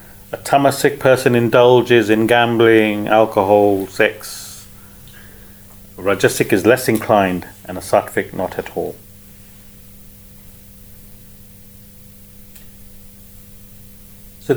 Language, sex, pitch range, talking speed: English, male, 100-115 Hz, 80 wpm